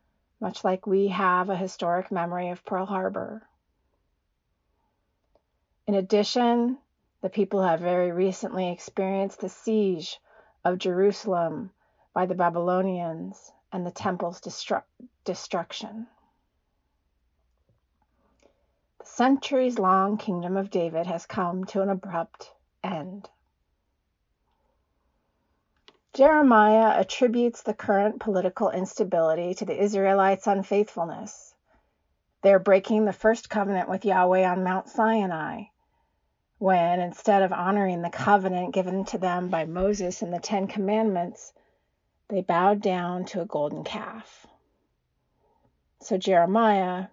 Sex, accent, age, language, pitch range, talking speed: female, American, 40-59, English, 175-210 Hz, 110 wpm